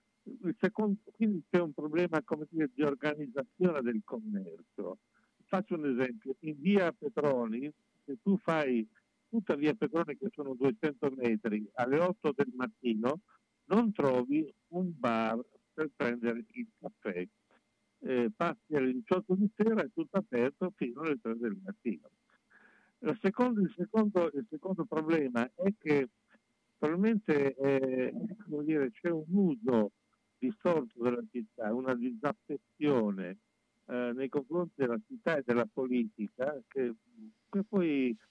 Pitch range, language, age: 120-175 Hz, Italian, 60-79